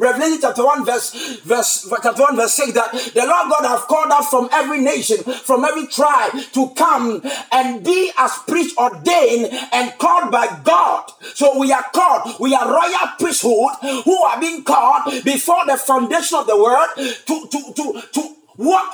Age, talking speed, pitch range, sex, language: 50-69, 175 wpm, 240-325 Hz, male, English